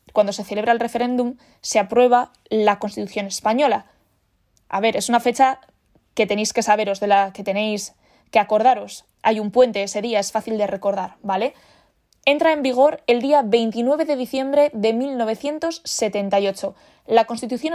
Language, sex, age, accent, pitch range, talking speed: Spanish, female, 20-39, Spanish, 210-265 Hz, 160 wpm